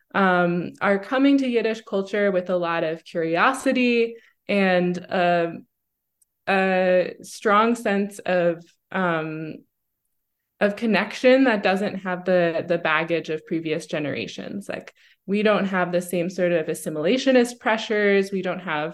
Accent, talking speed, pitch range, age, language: American, 135 wpm, 170-215 Hz, 20-39, English